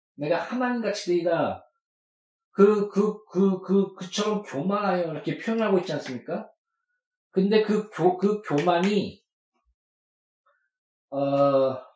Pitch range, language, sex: 180-240 Hz, Korean, male